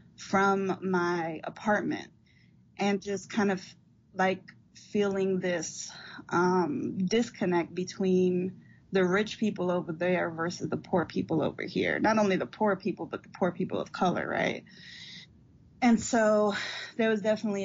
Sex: female